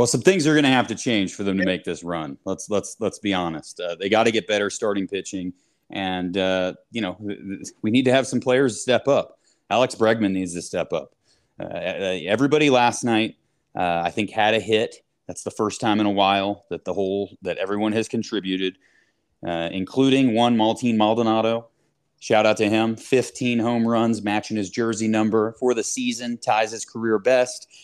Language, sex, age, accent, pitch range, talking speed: English, male, 30-49, American, 105-135 Hz, 200 wpm